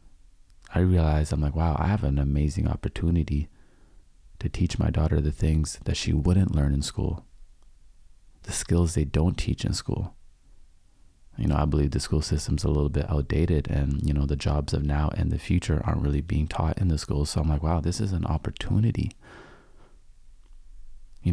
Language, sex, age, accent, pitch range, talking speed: English, male, 30-49, American, 75-95 Hz, 185 wpm